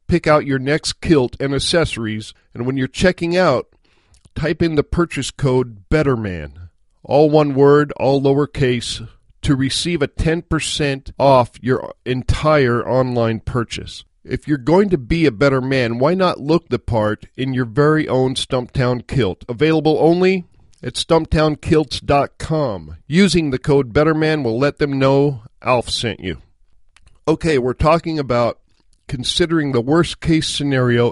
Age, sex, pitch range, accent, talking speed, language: 50-69, male, 115-150 Hz, American, 145 wpm, English